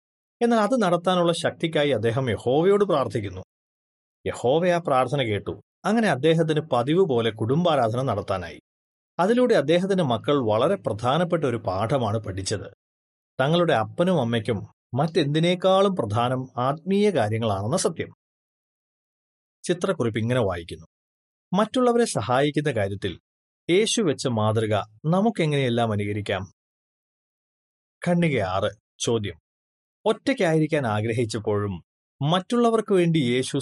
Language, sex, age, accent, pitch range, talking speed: Malayalam, male, 30-49, native, 110-175 Hz, 90 wpm